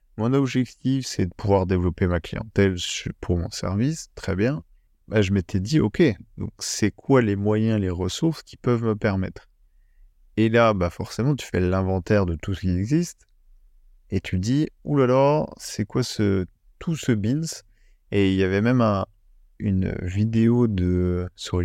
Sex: male